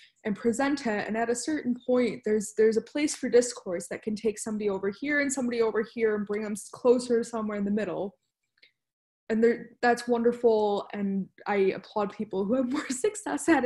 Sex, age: female, 20-39